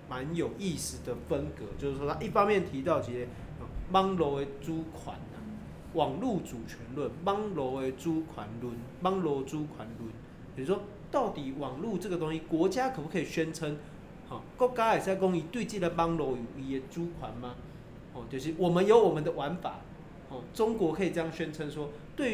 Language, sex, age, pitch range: Chinese, male, 20-39, 135-190 Hz